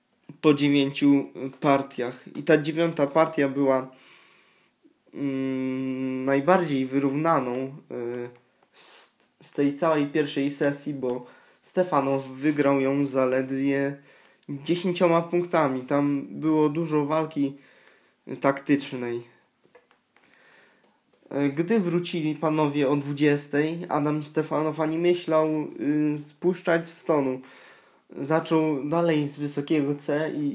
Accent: native